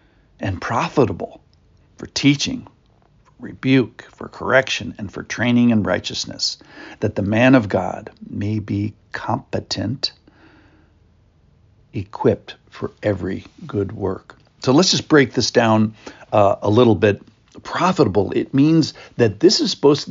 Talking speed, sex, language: 125 wpm, male, English